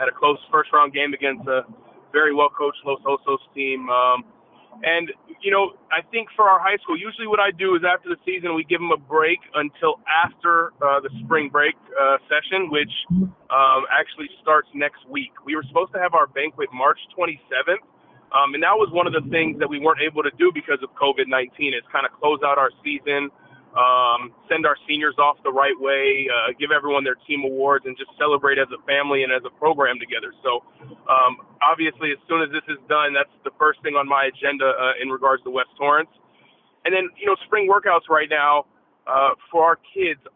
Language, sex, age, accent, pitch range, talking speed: English, male, 30-49, American, 135-170 Hz, 210 wpm